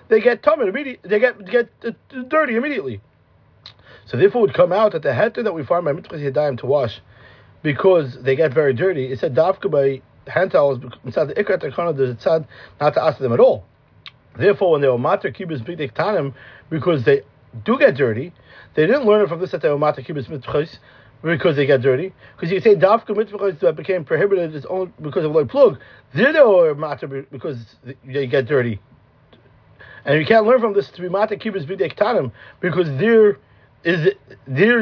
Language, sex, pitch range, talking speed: English, male, 145-210 Hz, 180 wpm